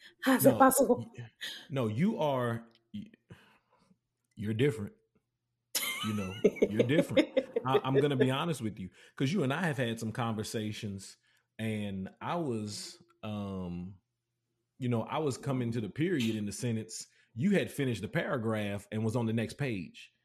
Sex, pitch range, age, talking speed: male, 105-120 Hz, 30-49, 160 wpm